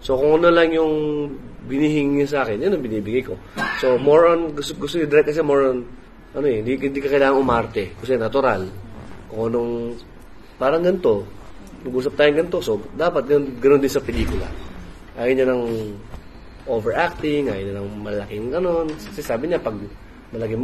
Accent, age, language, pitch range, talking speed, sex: native, 20-39, Filipino, 110-140 Hz, 170 wpm, male